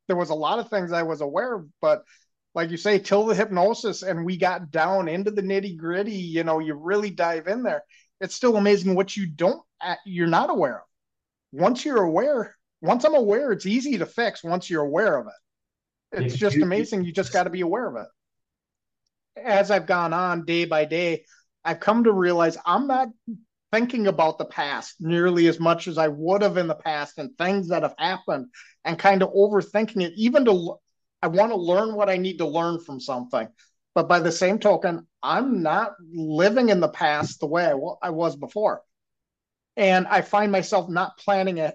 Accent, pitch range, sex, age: American, 170-210 Hz, male, 30-49